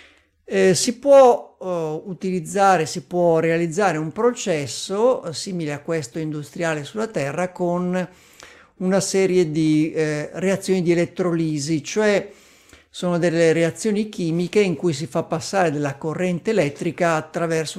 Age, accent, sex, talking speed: 50-69, native, male, 120 wpm